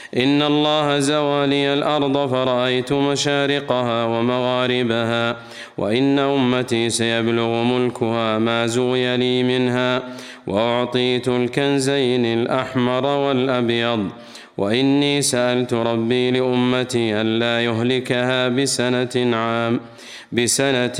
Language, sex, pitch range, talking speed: Arabic, male, 120-140 Hz, 80 wpm